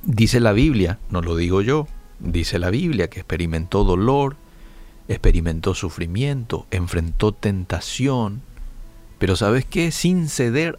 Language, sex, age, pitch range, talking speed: Spanish, male, 50-69, 85-115 Hz, 120 wpm